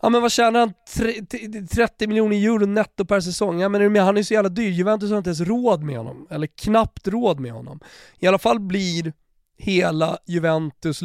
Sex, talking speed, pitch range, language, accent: male, 215 wpm, 145-185 Hz, Swedish, native